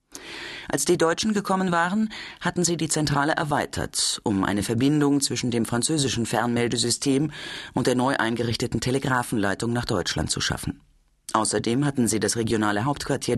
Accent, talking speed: German, 145 wpm